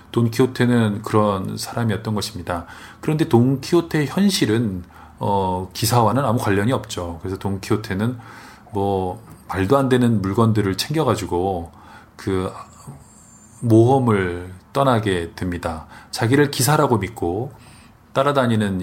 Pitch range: 100-125 Hz